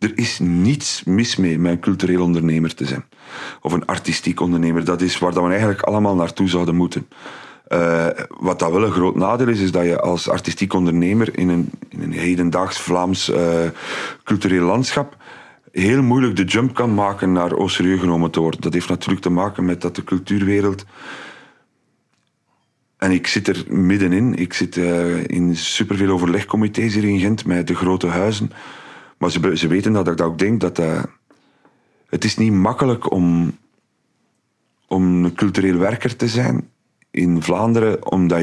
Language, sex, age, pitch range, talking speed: Dutch, male, 40-59, 85-100 Hz, 175 wpm